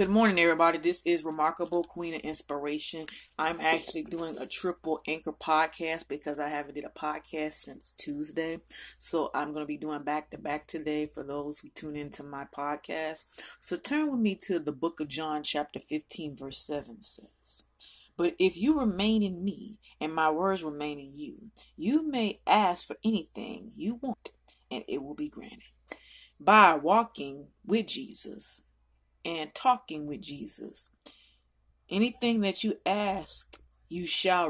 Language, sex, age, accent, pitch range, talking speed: English, female, 30-49, American, 150-215 Hz, 160 wpm